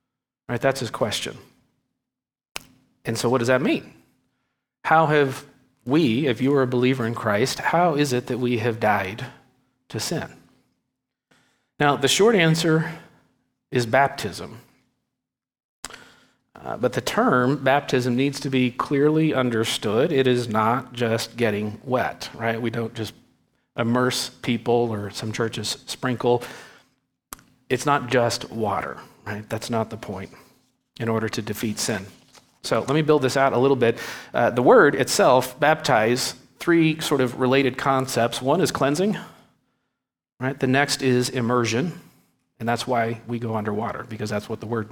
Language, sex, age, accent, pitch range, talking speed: English, male, 40-59, American, 115-135 Hz, 150 wpm